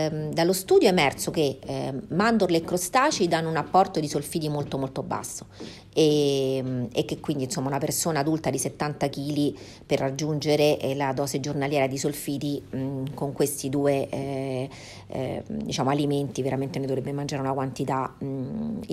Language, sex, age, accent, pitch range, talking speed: Italian, female, 40-59, native, 135-170 Hz, 160 wpm